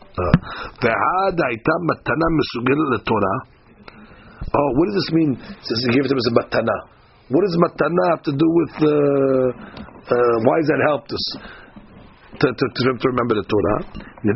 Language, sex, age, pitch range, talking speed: English, male, 50-69, 130-165 Hz, 145 wpm